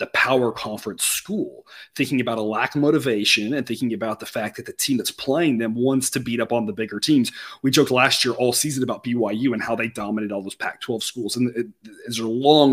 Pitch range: 115-150 Hz